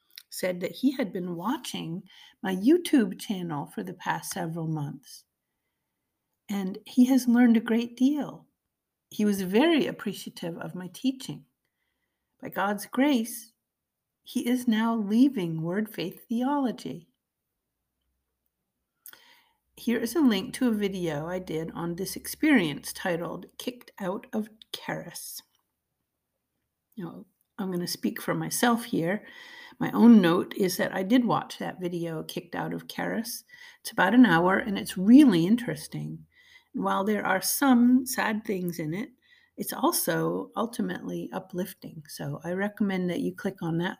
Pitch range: 180-250 Hz